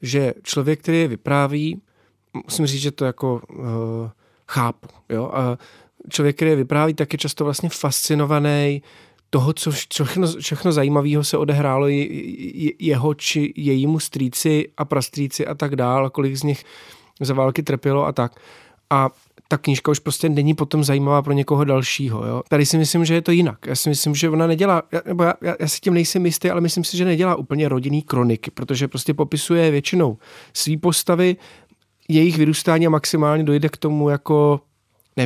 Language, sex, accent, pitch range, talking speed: Czech, male, native, 130-160 Hz, 170 wpm